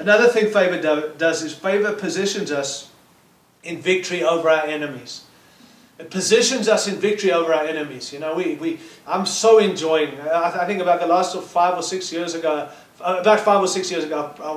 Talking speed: 190 wpm